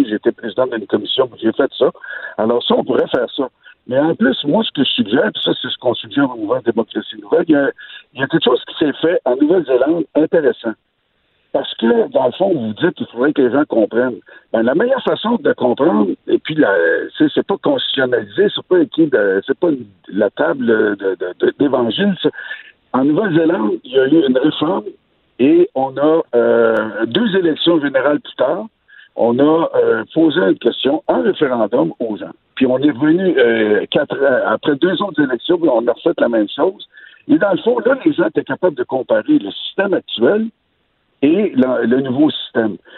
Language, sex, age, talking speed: French, male, 60-79, 205 wpm